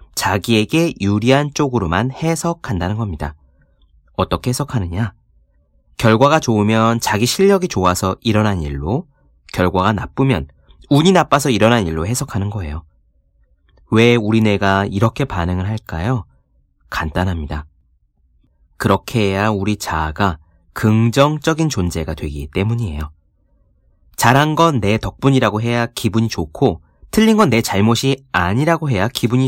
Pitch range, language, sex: 85-130 Hz, Korean, male